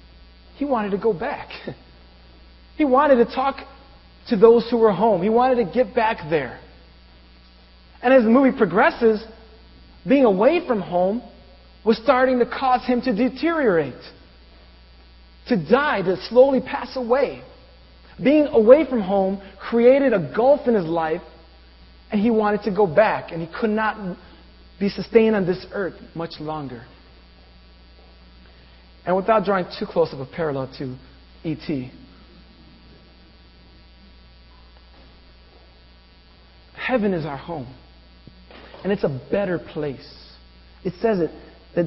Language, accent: English, American